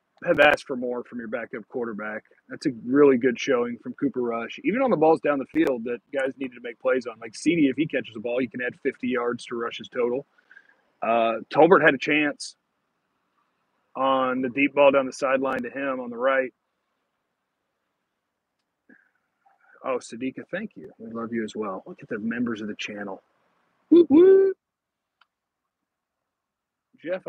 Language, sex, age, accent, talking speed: English, male, 40-59, American, 180 wpm